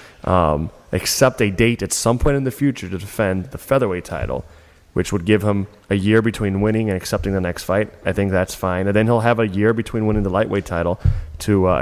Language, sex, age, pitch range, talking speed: English, male, 30-49, 90-110 Hz, 230 wpm